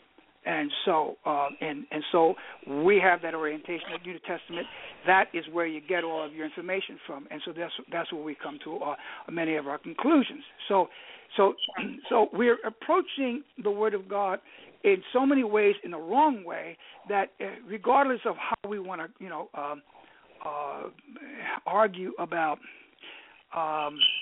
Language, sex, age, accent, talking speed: English, male, 60-79, American, 170 wpm